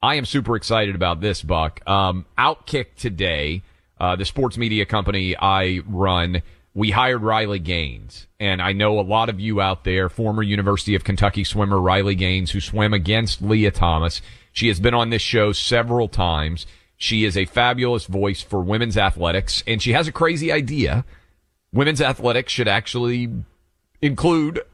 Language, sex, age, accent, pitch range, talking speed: English, male, 40-59, American, 90-115 Hz, 165 wpm